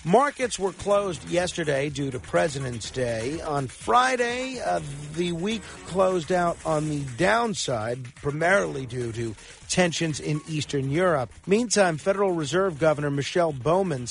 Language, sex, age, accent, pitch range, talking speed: English, male, 50-69, American, 135-195 Hz, 130 wpm